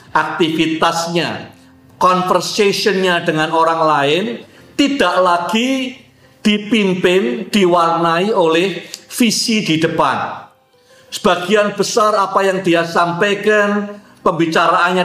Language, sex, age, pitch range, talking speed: Indonesian, male, 50-69, 160-195 Hz, 80 wpm